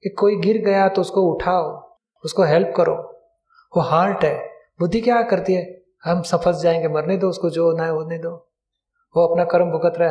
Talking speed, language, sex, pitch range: 190 wpm, Hindi, male, 170-205 Hz